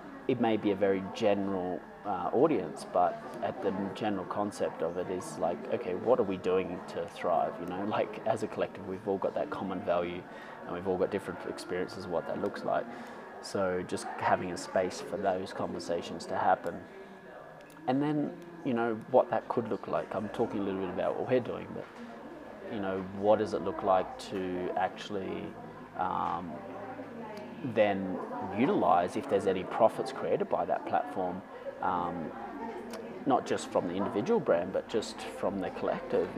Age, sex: 20-39, male